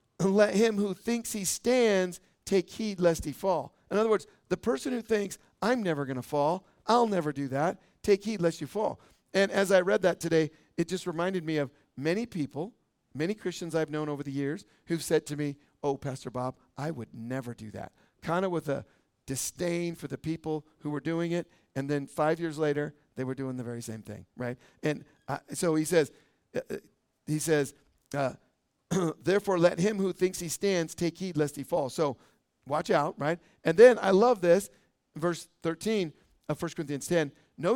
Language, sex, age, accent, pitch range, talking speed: English, male, 50-69, American, 145-185 Hz, 200 wpm